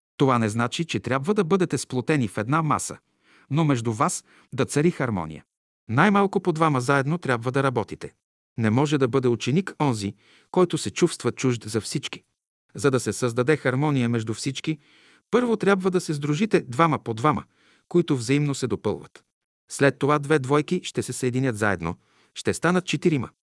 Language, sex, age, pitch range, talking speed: Bulgarian, male, 50-69, 120-165 Hz, 170 wpm